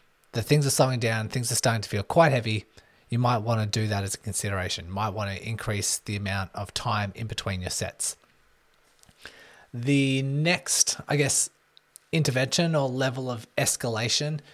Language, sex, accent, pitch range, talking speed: English, male, Australian, 110-135 Hz, 175 wpm